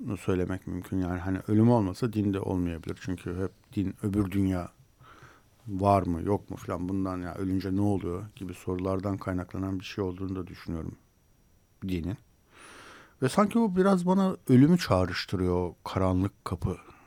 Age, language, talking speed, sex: 60-79, Turkish, 150 wpm, male